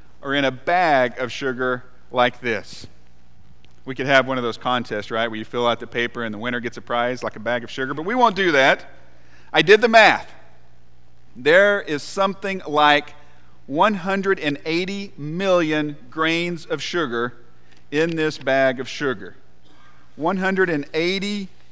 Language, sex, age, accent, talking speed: English, male, 40-59, American, 155 wpm